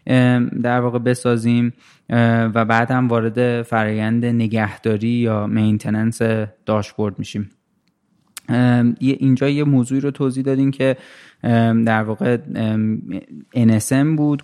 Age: 20-39